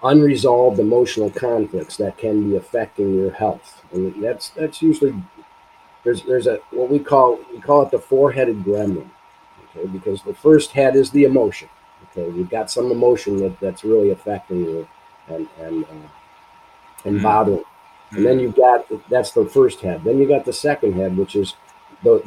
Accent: American